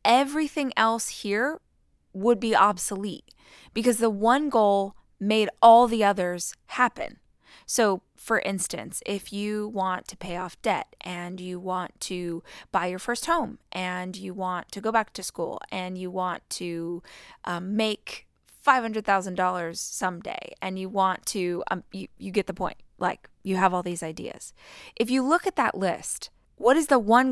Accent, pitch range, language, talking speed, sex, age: American, 185-225 Hz, English, 165 wpm, female, 20-39